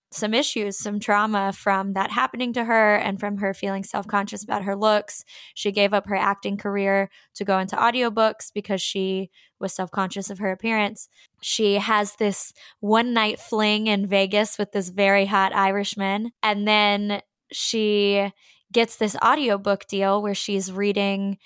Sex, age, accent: female, 10-29, American